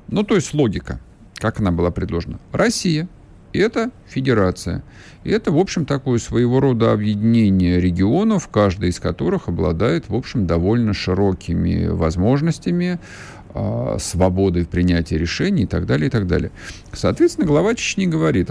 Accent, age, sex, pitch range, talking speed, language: native, 50-69, male, 90-140 Hz, 140 wpm, Russian